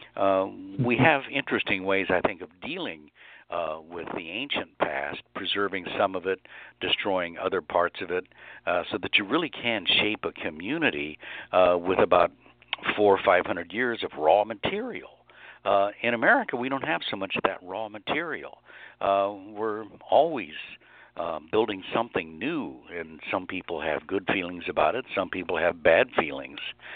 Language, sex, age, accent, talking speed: English, male, 60-79, American, 165 wpm